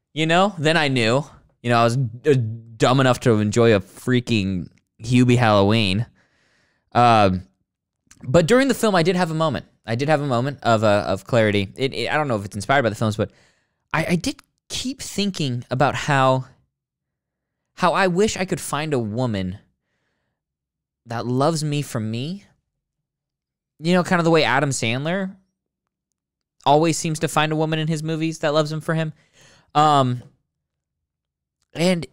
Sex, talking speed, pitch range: male, 175 wpm, 105-155 Hz